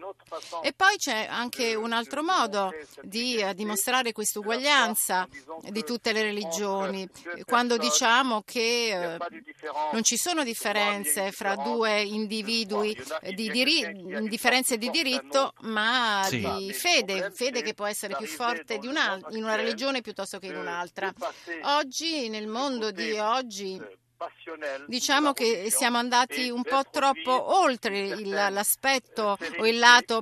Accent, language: native, Italian